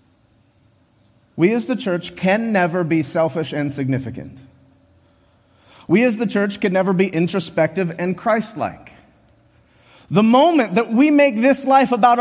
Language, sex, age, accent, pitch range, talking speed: English, male, 30-49, American, 165-260 Hz, 140 wpm